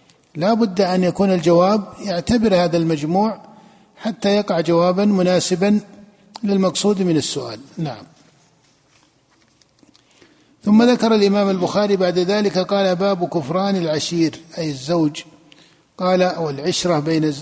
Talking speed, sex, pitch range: 105 wpm, male, 160-195 Hz